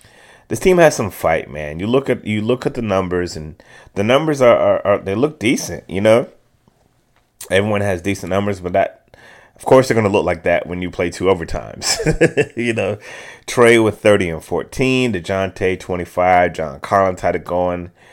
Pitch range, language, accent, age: 90-115 Hz, English, American, 30-49